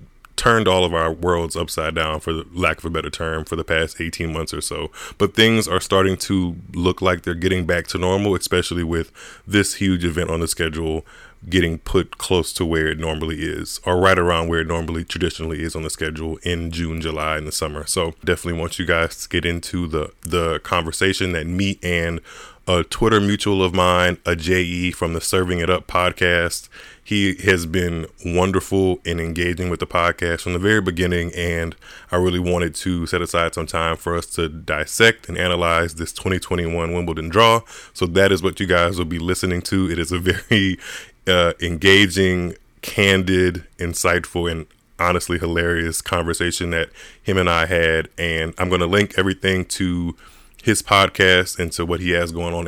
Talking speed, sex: 190 wpm, male